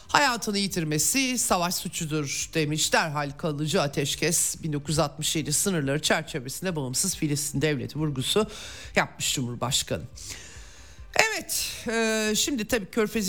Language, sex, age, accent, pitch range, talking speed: Turkish, male, 50-69, native, 155-205 Hz, 100 wpm